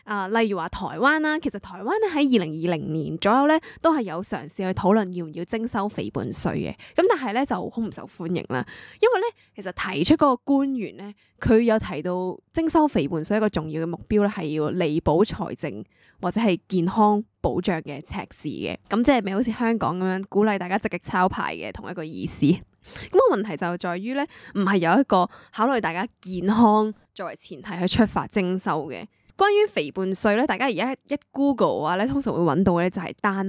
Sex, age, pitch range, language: female, 10-29, 180-245 Hz, Chinese